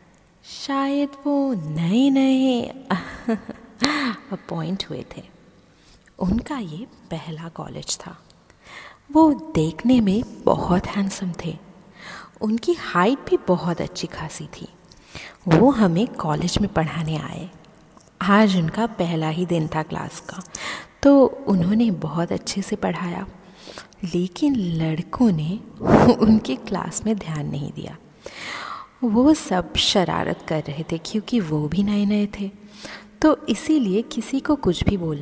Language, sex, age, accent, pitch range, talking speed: Hindi, female, 30-49, native, 170-235 Hz, 125 wpm